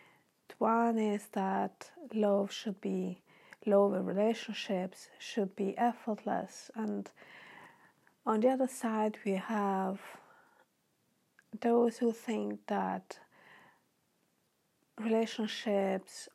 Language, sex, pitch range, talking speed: English, female, 190-230 Hz, 90 wpm